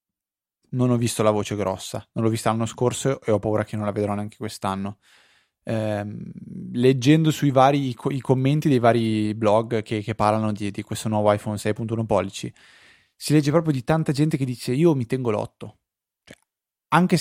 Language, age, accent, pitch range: Italian, 20-39, native, 105-135 Hz